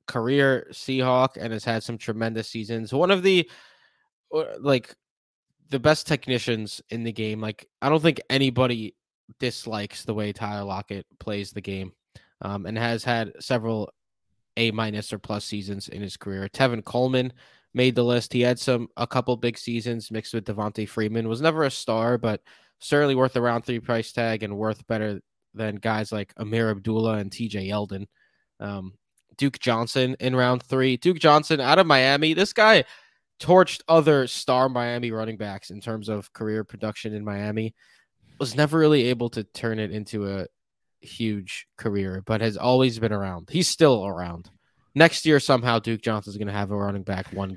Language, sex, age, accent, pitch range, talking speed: English, male, 20-39, American, 105-130 Hz, 180 wpm